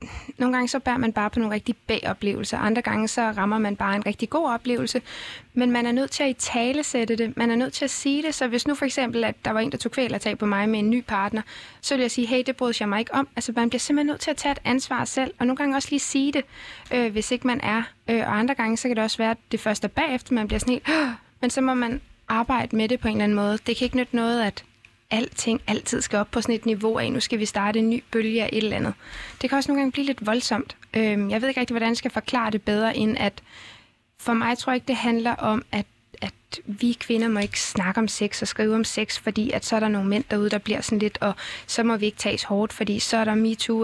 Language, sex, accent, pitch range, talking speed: Danish, female, native, 215-255 Hz, 290 wpm